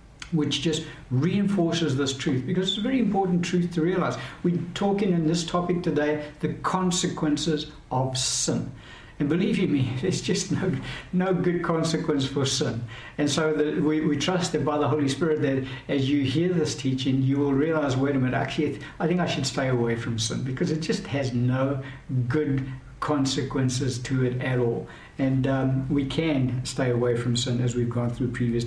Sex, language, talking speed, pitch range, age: male, English, 190 wpm, 130-155 Hz, 60-79